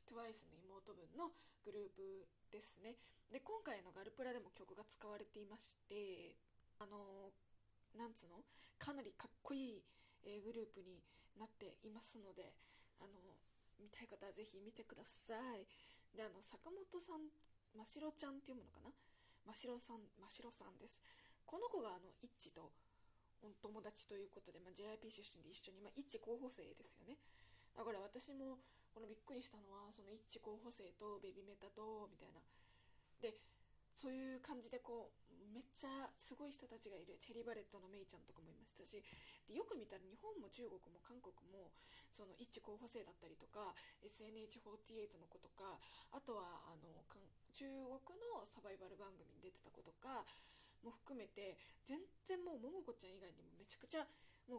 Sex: female